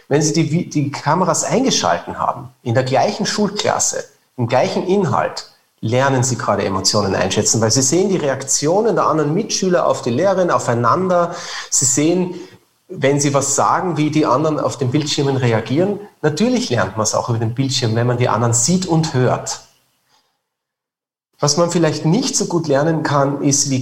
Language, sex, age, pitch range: German, male, 40-59, 125-160 Hz